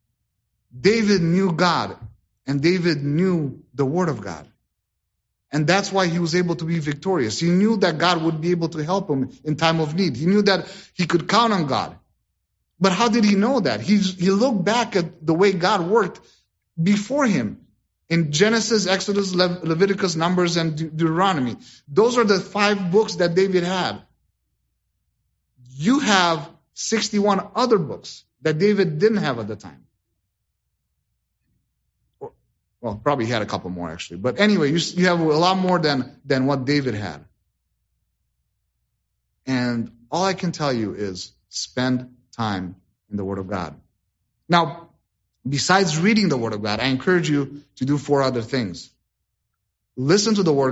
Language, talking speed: English, 160 wpm